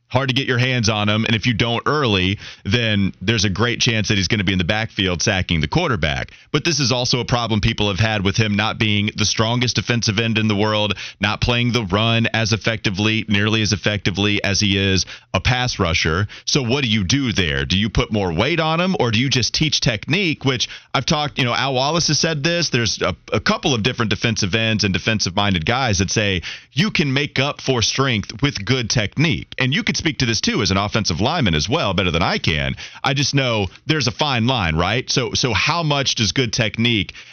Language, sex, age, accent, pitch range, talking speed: English, male, 30-49, American, 105-135 Hz, 235 wpm